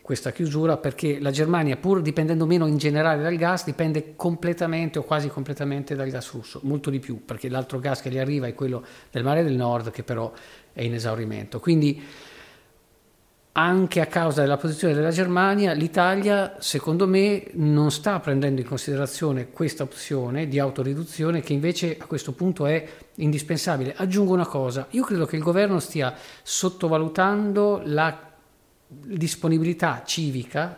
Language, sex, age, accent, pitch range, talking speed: Italian, male, 50-69, native, 130-170 Hz, 160 wpm